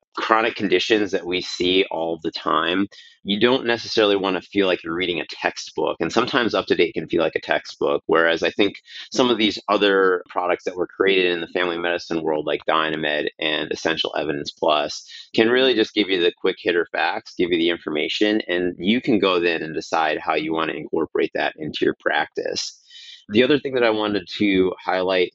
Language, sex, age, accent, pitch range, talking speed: English, male, 30-49, American, 85-135 Hz, 205 wpm